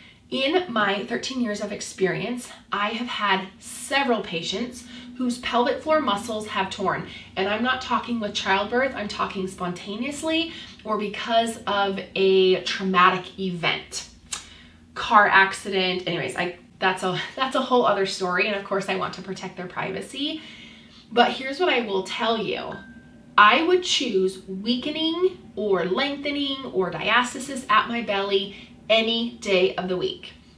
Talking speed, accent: 145 wpm, American